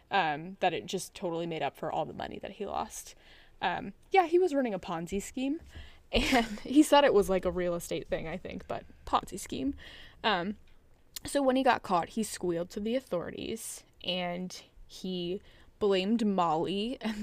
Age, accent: 10-29, American